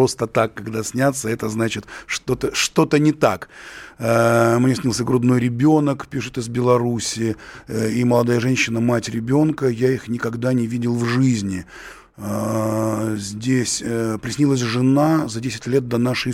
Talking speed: 130 wpm